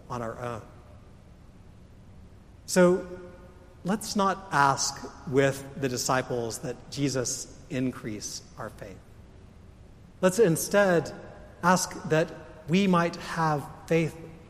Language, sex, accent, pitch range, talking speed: English, male, American, 110-160 Hz, 95 wpm